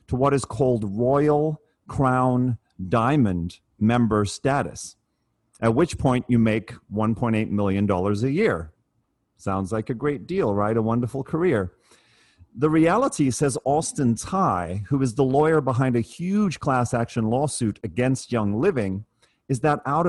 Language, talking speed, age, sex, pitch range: English, 145 wpm, 40-59, male, 110-150 Hz